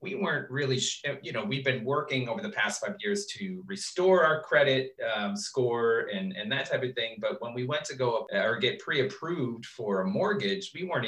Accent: American